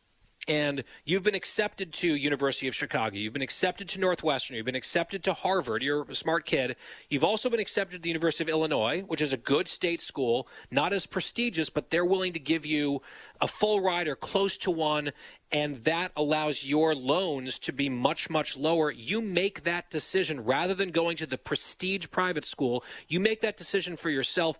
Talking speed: 200 wpm